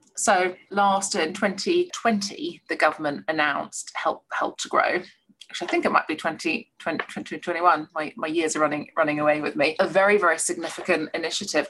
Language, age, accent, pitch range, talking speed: English, 30-49, British, 155-200 Hz, 180 wpm